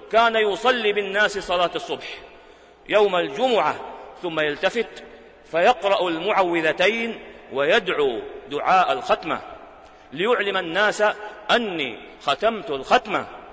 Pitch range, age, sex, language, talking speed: 170-225 Hz, 40-59, male, Arabic, 85 wpm